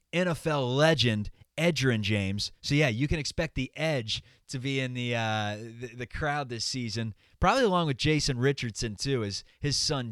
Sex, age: male, 20-39